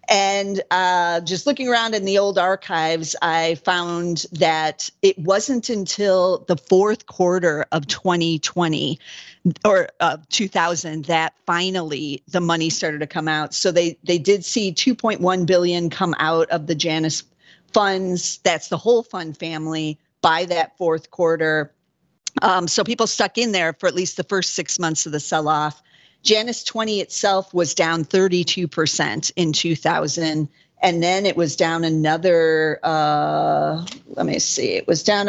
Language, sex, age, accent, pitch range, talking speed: English, female, 50-69, American, 165-195 Hz, 155 wpm